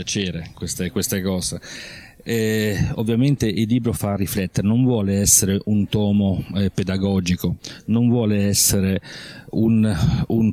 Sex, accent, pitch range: male, native, 100-130 Hz